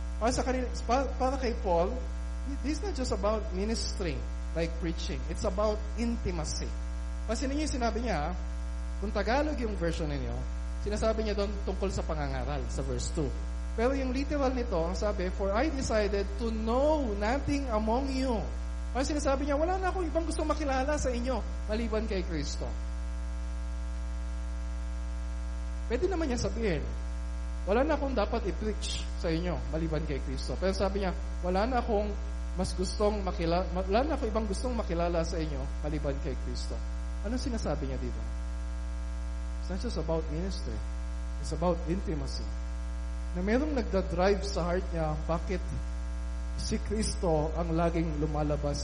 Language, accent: Filipino, native